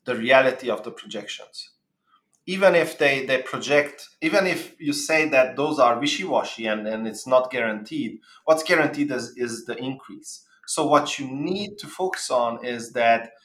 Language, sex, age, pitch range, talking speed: English, male, 30-49, 120-160 Hz, 170 wpm